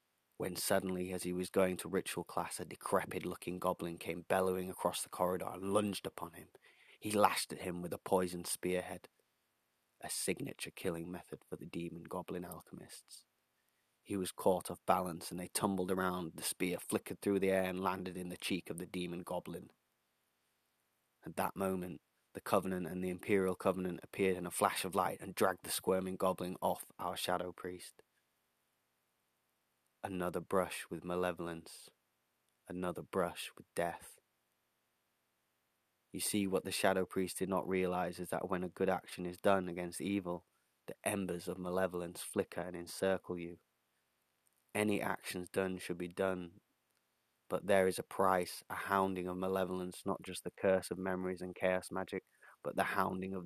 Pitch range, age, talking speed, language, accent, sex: 90-95 Hz, 20-39, 165 wpm, English, British, male